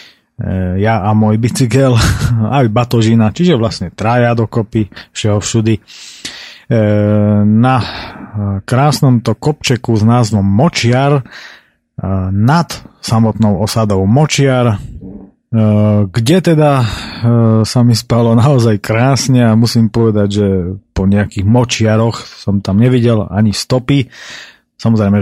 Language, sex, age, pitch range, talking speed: Slovak, male, 30-49, 105-125 Hz, 105 wpm